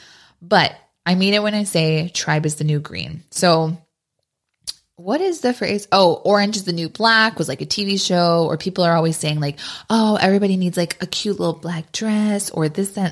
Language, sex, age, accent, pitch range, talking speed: English, female, 20-39, American, 155-195 Hz, 210 wpm